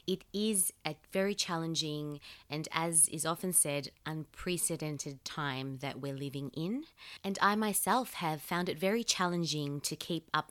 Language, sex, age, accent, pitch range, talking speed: English, female, 20-39, Australian, 150-205 Hz, 155 wpm